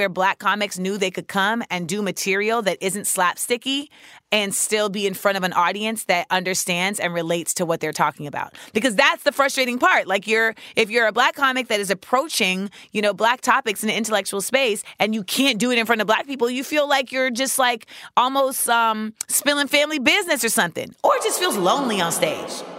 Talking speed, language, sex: 220 wpm, English, female